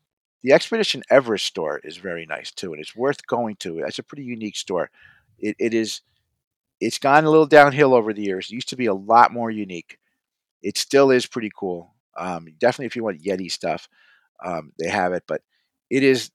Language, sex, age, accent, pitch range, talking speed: English, male, 50-69, American, 105-135 Hz, 205 wpm